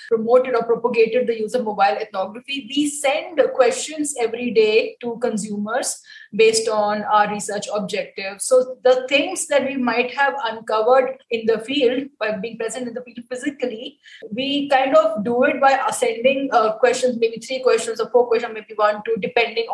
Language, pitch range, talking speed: English, 220-270 Hz, 175 wpm